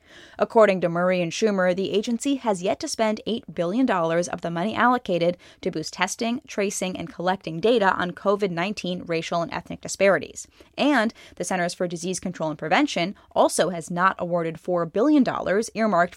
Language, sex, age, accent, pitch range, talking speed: English, female, 10-29, American, 175-225 Hz, 165 wpm